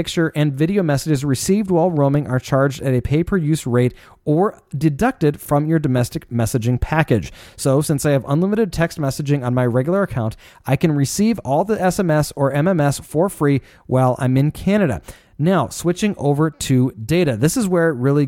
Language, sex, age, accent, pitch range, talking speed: English, male, 30-49, American, 130-165 Hz, 180 wpm